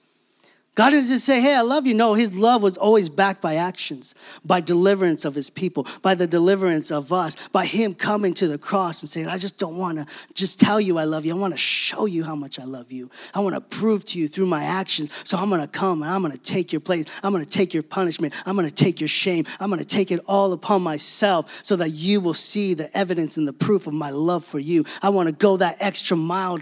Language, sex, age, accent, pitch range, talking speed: English, male, 30-49, American, 150-195 Hz, 265 wpm